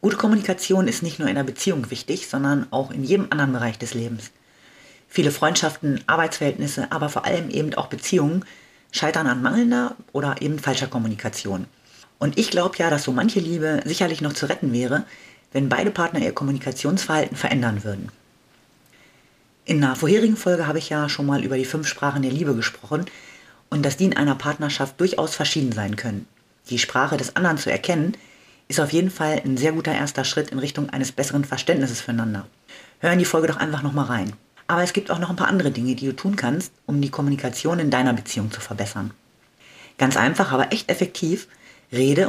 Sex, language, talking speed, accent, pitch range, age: female, German, 190 wpm, German, 125-165 Hz, 30-49